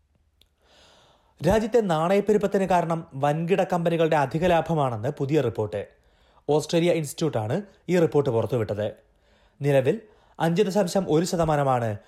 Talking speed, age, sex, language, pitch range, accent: 85 wpm, 30-49, male, Malayalam, 130-175 Hz, native